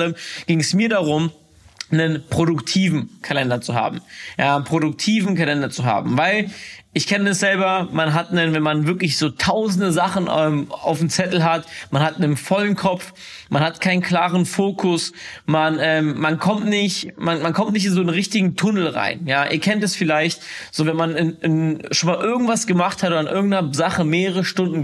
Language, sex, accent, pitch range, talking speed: German, male, German, 155-185 Hz, 195 wpm